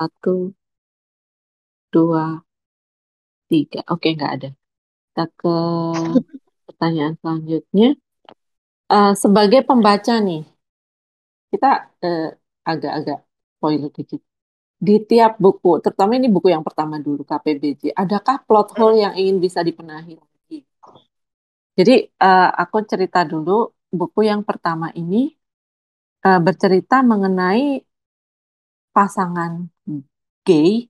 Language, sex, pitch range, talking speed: Indonesian, female, 155-200 Hz, 95 wpm